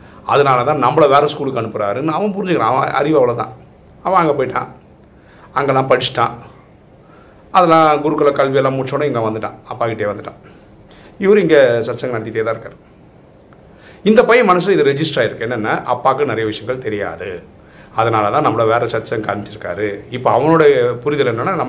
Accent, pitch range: native, 110-150 Hz